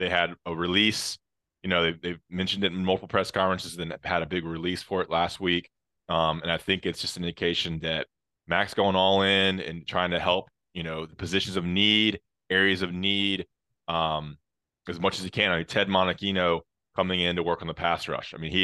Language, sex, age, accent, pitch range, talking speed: English, male, 20-39, American, 85-95 Hz, 230 wpm